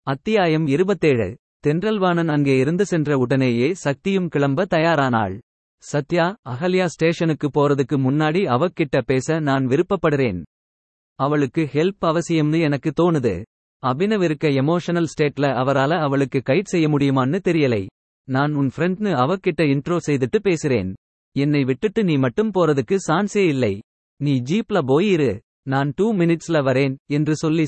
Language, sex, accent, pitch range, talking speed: Tamil, male, native, 135-175 Hz, 125 wpm